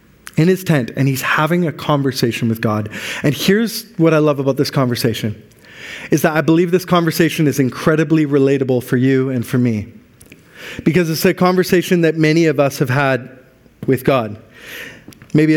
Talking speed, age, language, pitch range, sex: 175 wpm, 30-49, English, 130-160 Hz, male